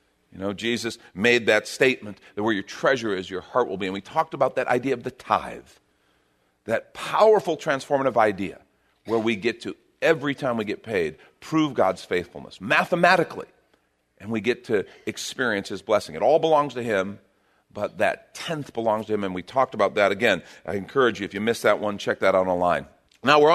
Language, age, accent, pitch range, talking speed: English, 40-59, American, 120-195 Hz, 200 wpm